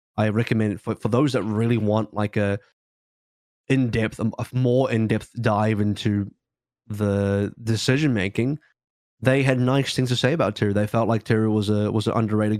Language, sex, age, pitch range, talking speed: English, male, 20-39, 110-125 Hz, 175 wpm